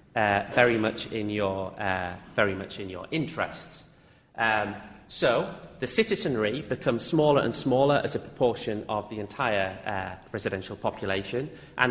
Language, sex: English, male